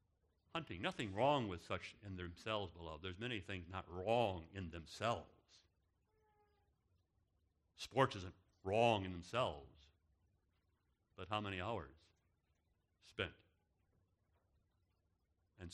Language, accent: English, American